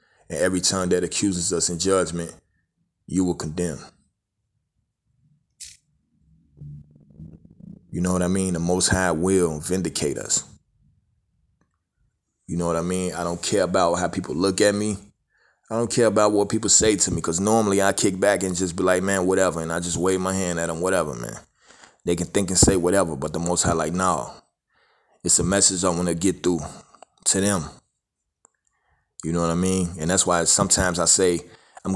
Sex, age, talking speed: male, 20-39, 190 wpm